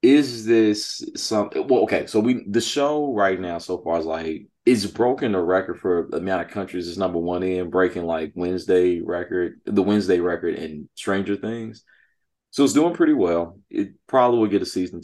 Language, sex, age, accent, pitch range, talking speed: English, male, 30-49, American, 85-105 Hz, 205 wpm